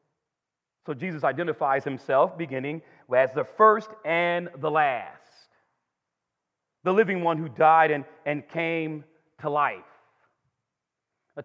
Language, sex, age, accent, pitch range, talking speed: English, male, 40-59, American, 140-185 Hz, 115 wpm